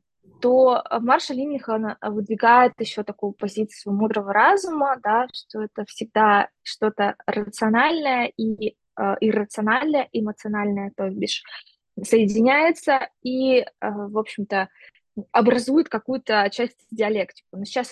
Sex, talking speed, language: female, 100 wpm, Russian